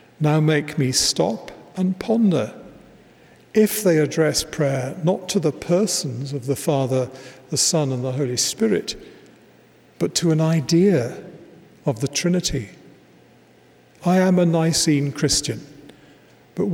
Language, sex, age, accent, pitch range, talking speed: English, male, 50-69, British, 135-170 Hz, 130 wpm